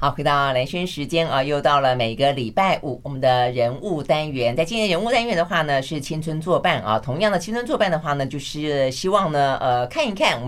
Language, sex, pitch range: Chinese, female, 130-185 Hz